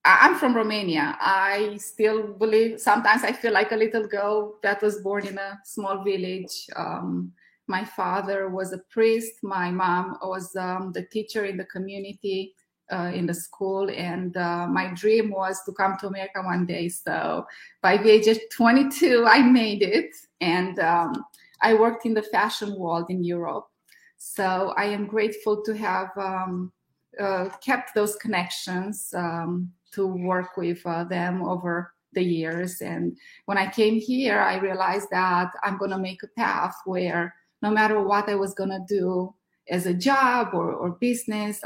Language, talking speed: English, 165 wpm